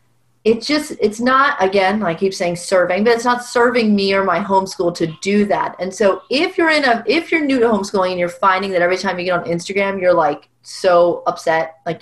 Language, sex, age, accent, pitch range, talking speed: English, female, 30-49, American, 180-230 Hz, 230 wpm